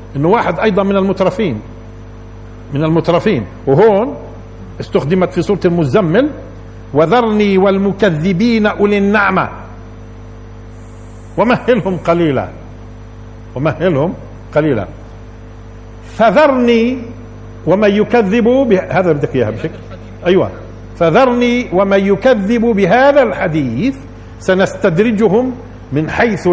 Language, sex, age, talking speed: Arabic, male, 50-69, 70 wpm